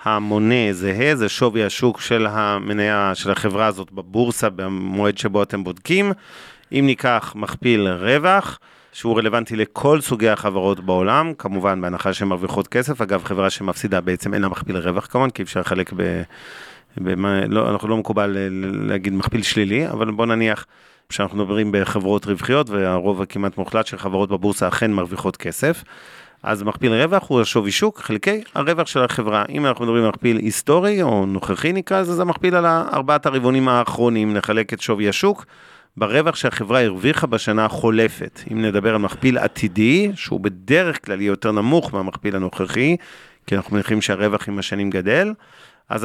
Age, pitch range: 40-59, 100-130 Hz